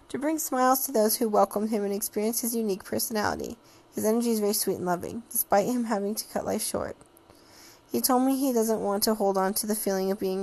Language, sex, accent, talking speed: English, female, American, 235 wpm